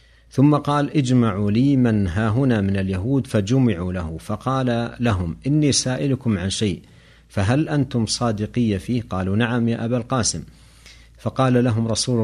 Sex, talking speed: male, 135 wpm